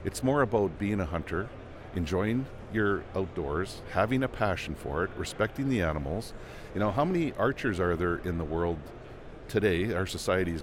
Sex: male